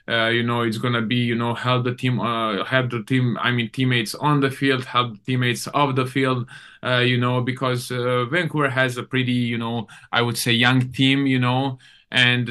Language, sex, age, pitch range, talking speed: English, male, 20-39, 120-130 Hz, 215 wpm